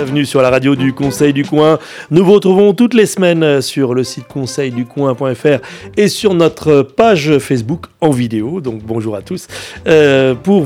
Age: 30-49